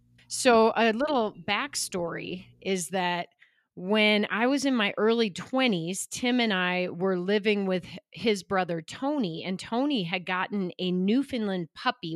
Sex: female